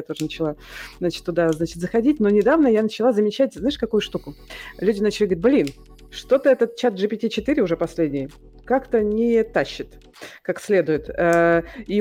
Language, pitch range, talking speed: Russian, 165-225 Hz, 155 wpm